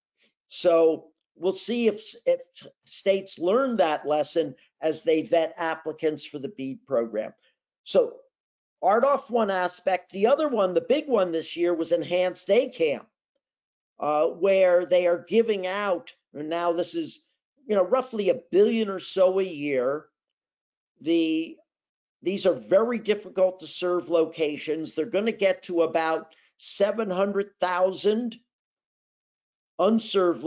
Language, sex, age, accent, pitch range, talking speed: English, male, 50-69, American, 170-215 Hz, 140 wpm